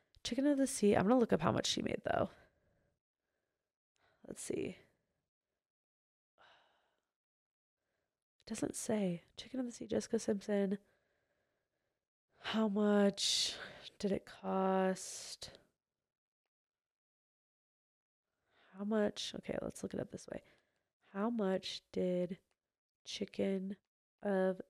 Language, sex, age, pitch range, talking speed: English, female, 20-39, 190-230 Hz, 105 wpm